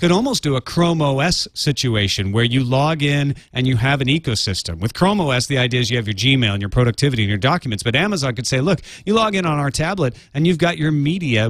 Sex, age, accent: male, 40-59, American